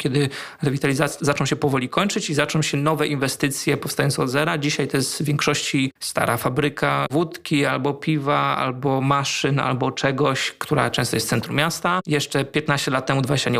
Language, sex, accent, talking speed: Polish, male, native, 180 wpm